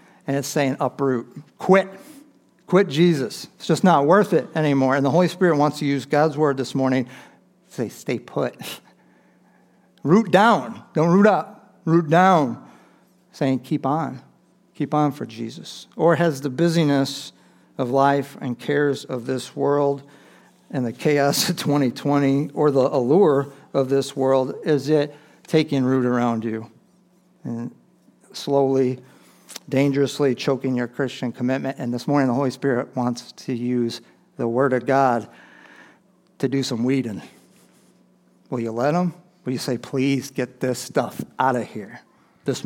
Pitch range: 130-155 Hz